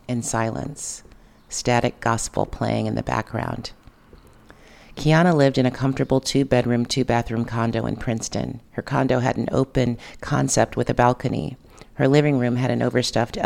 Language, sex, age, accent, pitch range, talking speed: English, female, 40-59, American, 120-140 Hz, 145 wpm